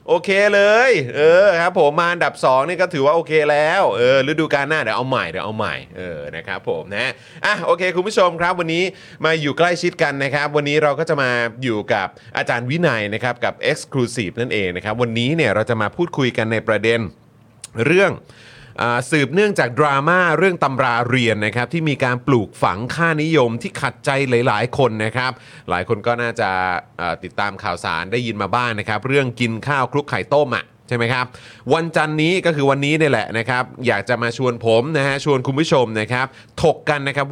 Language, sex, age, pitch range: Thai, male, 30-49, 115-150 Hz